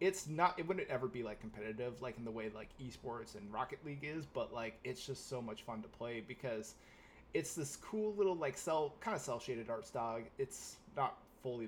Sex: male